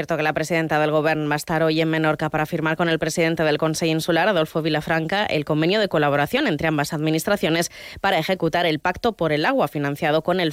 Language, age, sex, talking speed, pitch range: Spanish, 20-39, female, 220 wpm, 155-175 Hz